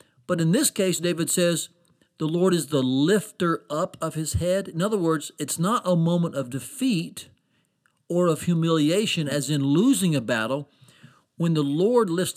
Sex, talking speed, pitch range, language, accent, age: male, 175 wpm, 145-185 Hz, English, American, 50-69